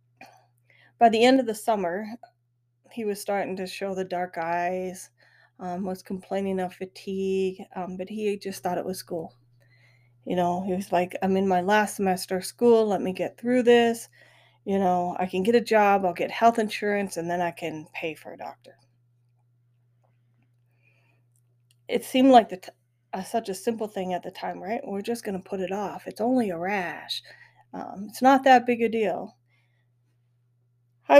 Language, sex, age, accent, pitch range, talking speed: English, female, 30-49, American, 155-195 Hz, 175 wpm